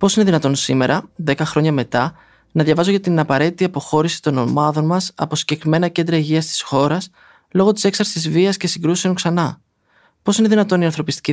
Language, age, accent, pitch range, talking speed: Greek, 20-39, native, 135-170 Hz, 180 wpm